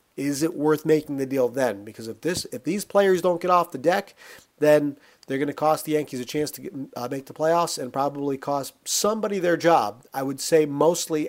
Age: 40-59